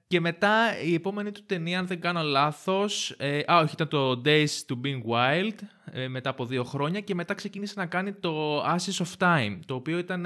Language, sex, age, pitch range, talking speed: Greek, male, 20-39, 115-160 Hz, 205 wpm